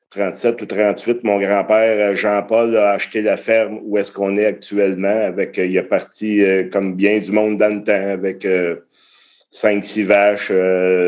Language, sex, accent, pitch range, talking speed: French, male, Canadian, 95-105 Hz, 160 wpm